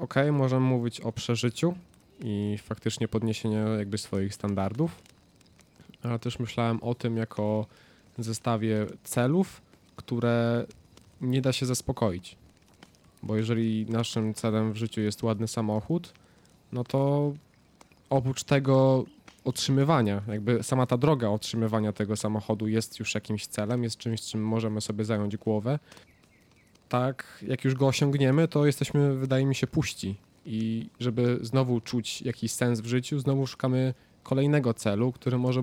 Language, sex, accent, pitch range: Polish, male, native, 105-135 Hz